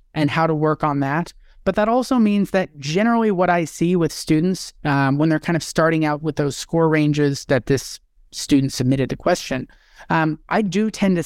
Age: 30-49